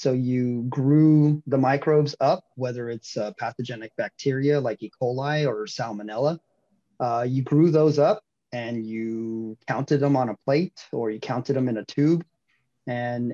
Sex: male